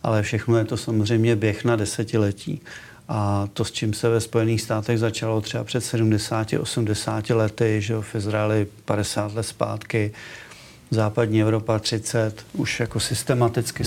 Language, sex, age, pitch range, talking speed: Czech, male, 50-69, 110-120 Hz, 145 wpm